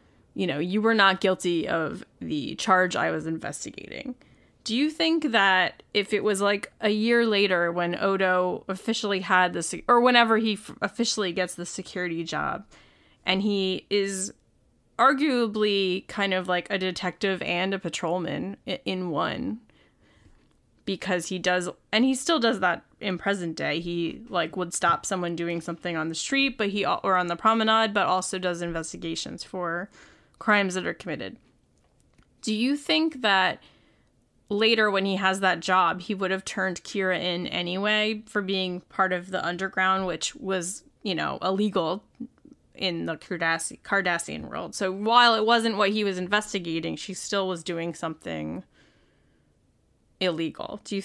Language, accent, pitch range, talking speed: English, American, 180-210 Hz, 160 wpm